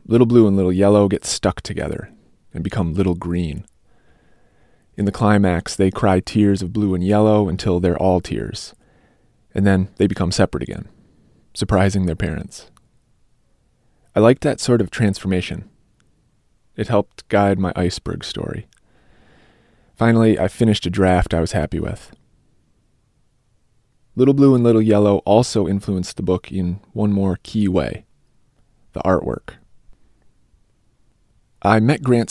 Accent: American